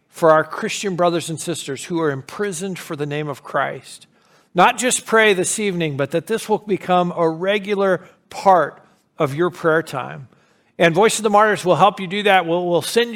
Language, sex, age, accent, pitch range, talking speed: English, male, 50-69, American, 165-200 Hz, 195 wpm